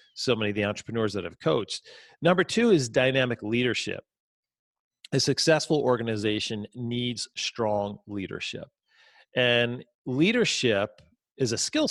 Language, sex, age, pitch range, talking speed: English, male, 40-59, 115-160 Hz, 120 wpm